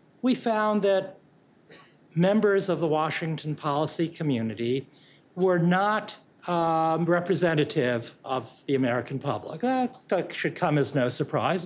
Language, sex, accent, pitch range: English, male, American, 145-190 Hz